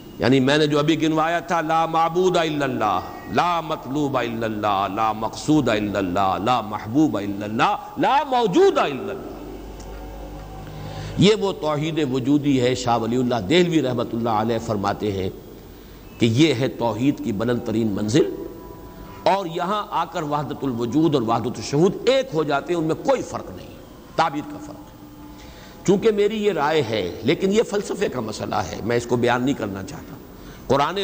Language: Urdu